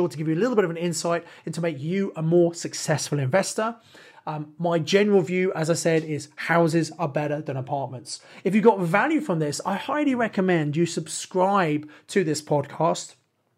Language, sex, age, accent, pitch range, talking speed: English, male, 30-49, British, 150-180 Hz, 195 wpm